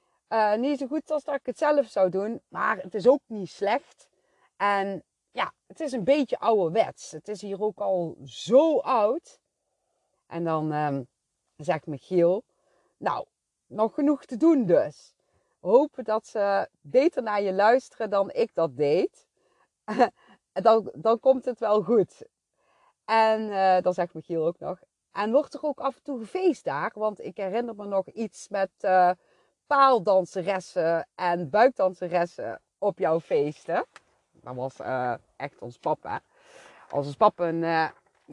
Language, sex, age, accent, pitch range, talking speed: Dutch, female, 40-59, Dutch, 150-225 Hz, 155 wpm